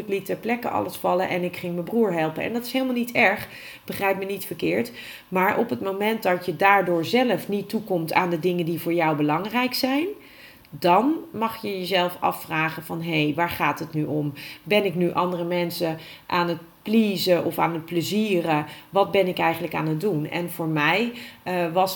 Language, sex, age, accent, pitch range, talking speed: Dutch, female, 40-59, Dutch, 160-185 Hz, 210 wpm